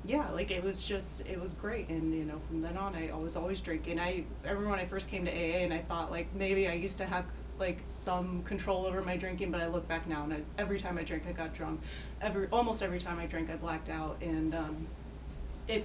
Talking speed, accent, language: 260 wpm, American, English